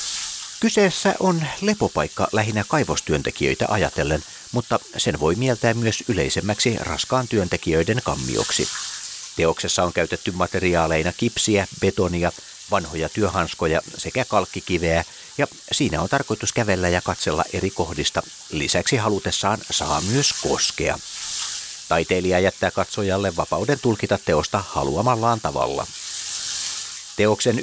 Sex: male